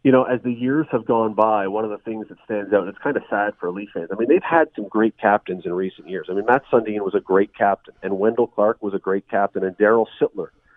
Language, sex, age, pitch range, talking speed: English, male, 40-59, 100-125 Hz, 285 wpm